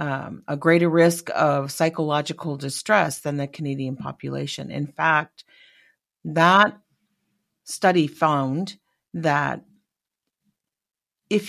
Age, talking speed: 40-59, 95 wpm